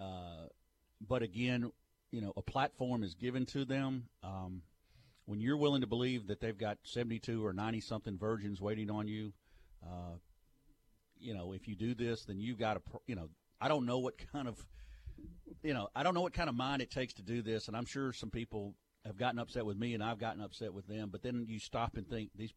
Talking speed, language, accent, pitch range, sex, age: 225 wpm, English, American, 100-120 Hz, male, 50-69